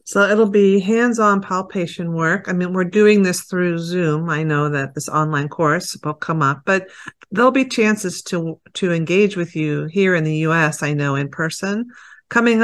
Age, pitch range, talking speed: 50-69, 160-195 Hz, 190 wpm